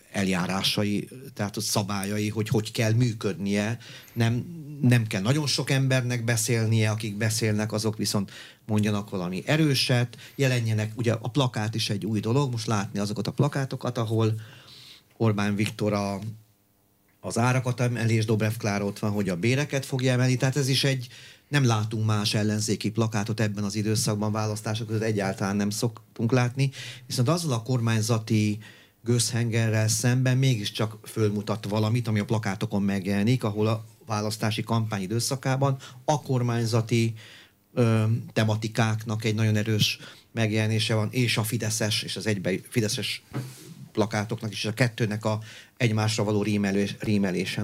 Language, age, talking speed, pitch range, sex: Hungarian, 30-49, 135 wpm, 105-125 Hz, male